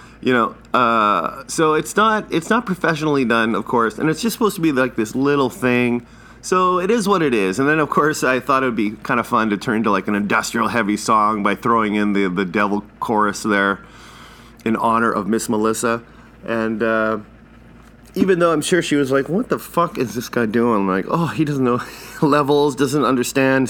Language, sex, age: English, male, 30-49